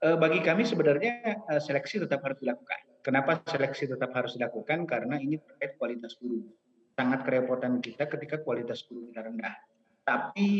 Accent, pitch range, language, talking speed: native, 120-170 Hz, Indonesian, 145 wpm